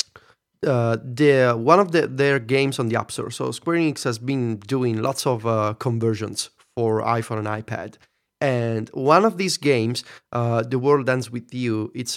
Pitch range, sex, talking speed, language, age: 115-155 Hz, male, 175 wpm, English, 30-49